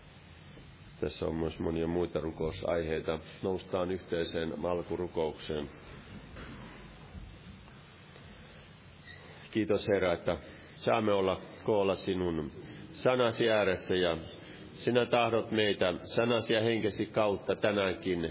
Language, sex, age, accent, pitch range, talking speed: Finnish, male, 40-59, native, 95-125 Hz, 90 wpm